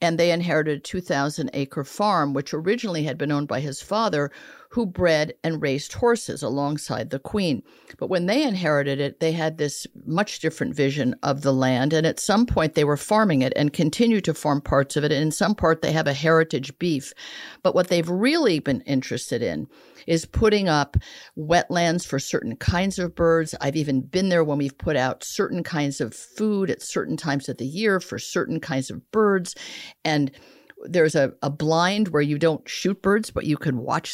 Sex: female